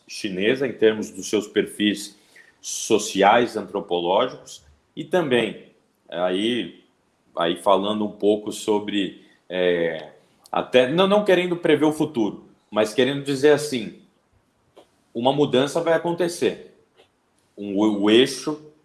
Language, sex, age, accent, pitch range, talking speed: Portuguese, male, 40-59, Brazilian, 105-135 Hz, 100 wpm